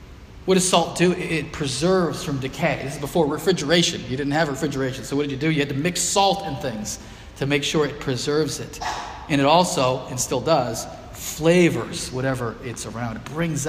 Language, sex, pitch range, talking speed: English, male, 140-180 Hz, 200 wpm